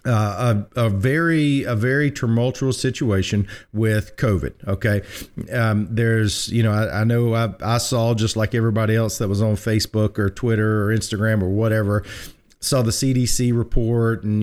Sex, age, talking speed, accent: male, 40-59, 165 wpm, American